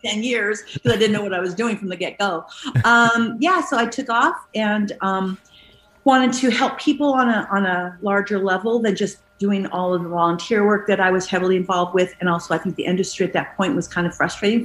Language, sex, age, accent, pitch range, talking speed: English, female, 40-59, American, 185-230 Hz, 240 wpm